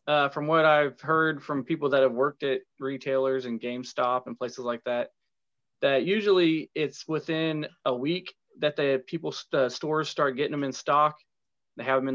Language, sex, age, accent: English, male, 20-39, American